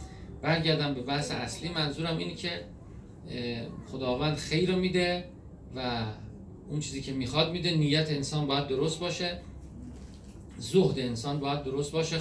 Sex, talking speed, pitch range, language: male, 130 wpm, 125-170 Hz, Persian